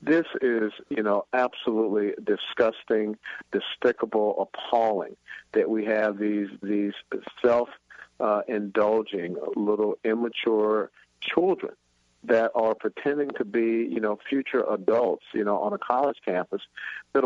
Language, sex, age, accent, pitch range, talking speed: English, male, 50-69, American, 105-125 Hz, 120 wpm